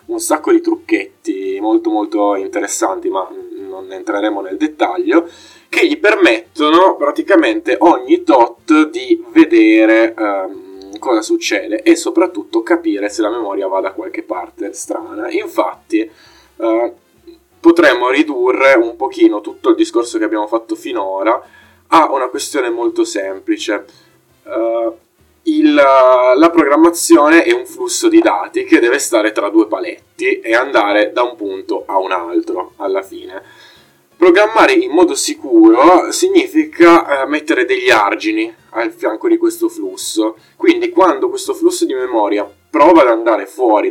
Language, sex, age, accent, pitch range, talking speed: Italian, male, 20-39, native, 320-355 Hz, 140 wpm